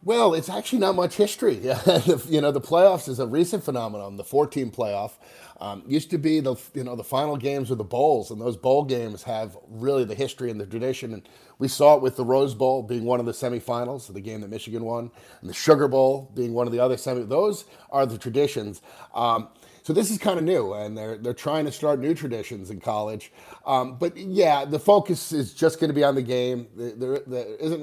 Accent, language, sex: American, English, male